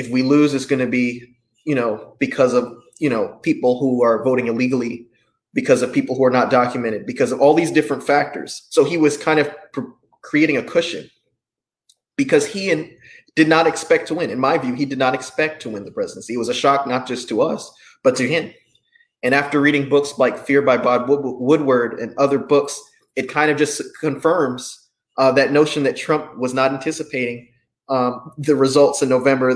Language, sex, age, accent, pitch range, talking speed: English, male, 20-39, American, 125-150 Hz, 200 wpm